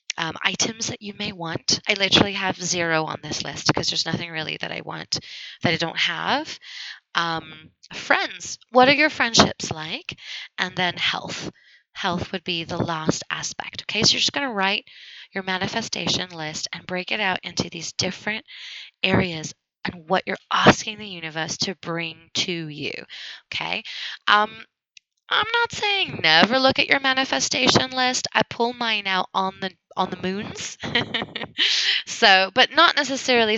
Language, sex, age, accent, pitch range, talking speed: English, female, 20-39, American, 170-225 Hz, 165 wpm